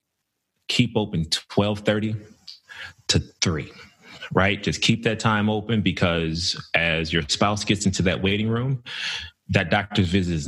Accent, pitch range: American, 80-100 Hz